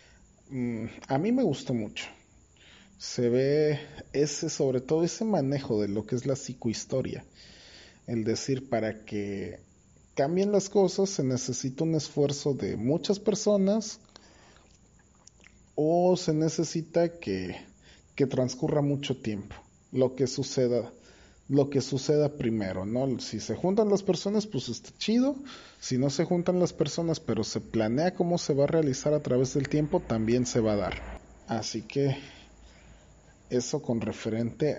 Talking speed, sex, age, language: 145 wpm, male, 40-59, Spanish